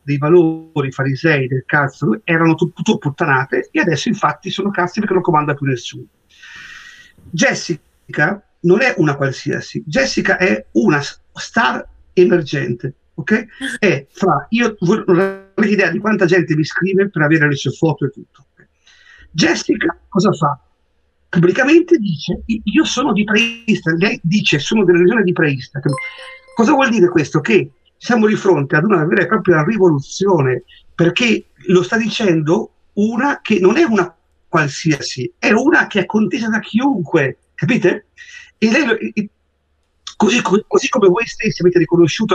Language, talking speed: Italian, 150 wpm